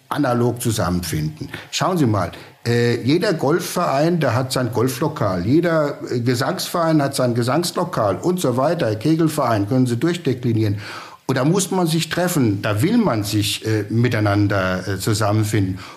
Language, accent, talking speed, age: German, German, 145 wpm, 60-79